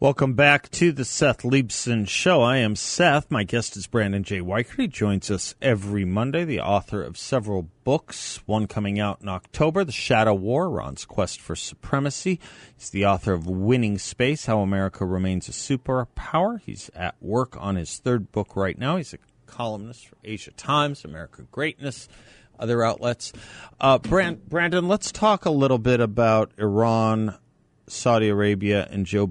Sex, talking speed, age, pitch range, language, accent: male, 165 wpm, 40-59, 100-130 Hz, English, American